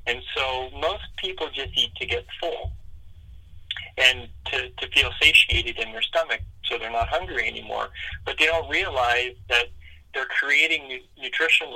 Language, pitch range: English, 100-140 Hz